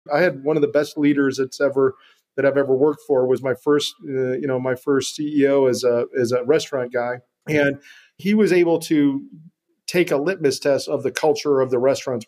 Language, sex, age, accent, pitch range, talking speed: English, male, 40-59, American, 140-180 Hz, 215 wpm